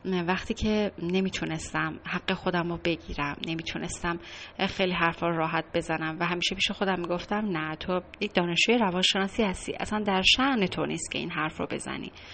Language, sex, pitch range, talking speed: Persian, female, 170-210 Hz, 160 wpm